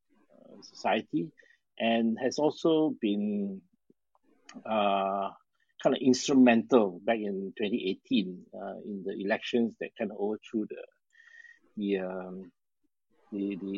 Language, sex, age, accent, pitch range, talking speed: English, male, 50-69, Malaysian, 100-130 Hz, 110 wpm